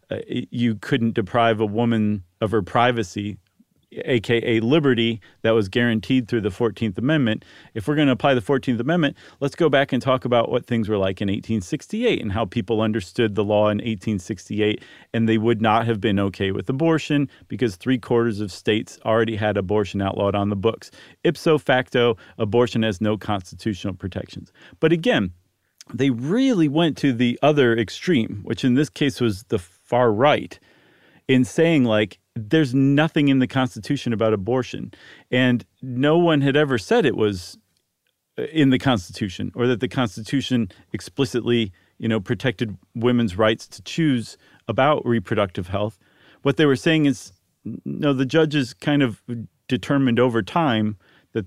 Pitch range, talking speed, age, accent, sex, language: 105-130 Hz, 165 wpm, 40-59, American, male, English